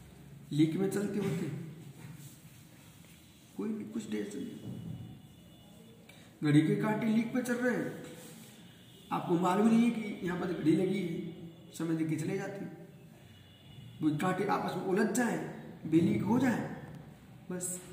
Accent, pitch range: native, 155-205 Hz